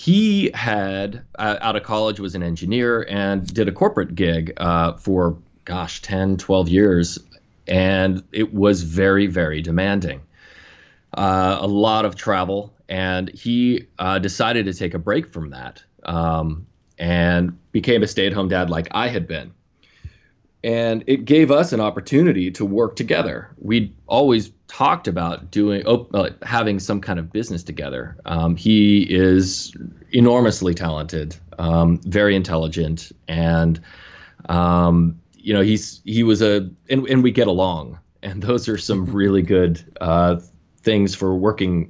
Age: 20-39